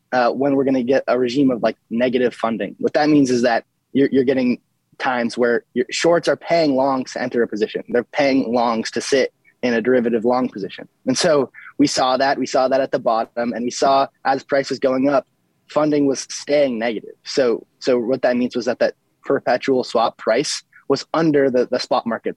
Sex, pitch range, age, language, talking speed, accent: male, 120-140 Hz, 20-39, English, 215 wpm, American